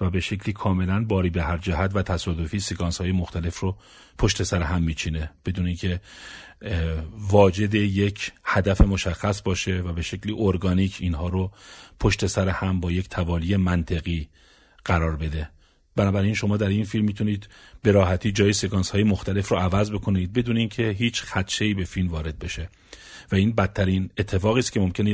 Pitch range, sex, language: 90-105 Hz, male, Persian